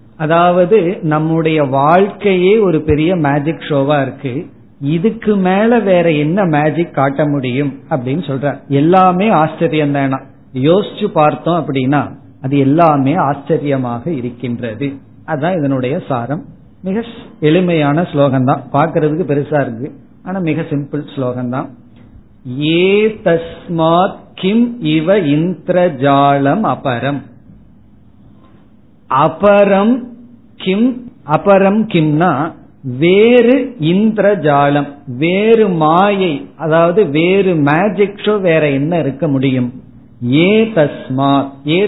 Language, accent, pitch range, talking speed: Tamil, native, 140-180 Hz, 90 wpm